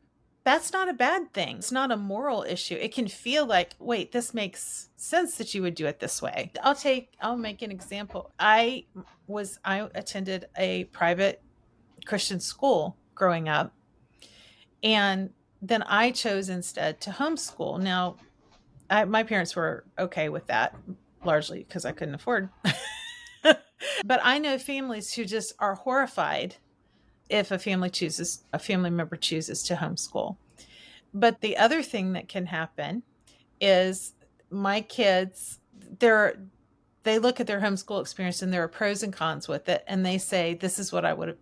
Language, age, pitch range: English, 40-59, 175-225 Hz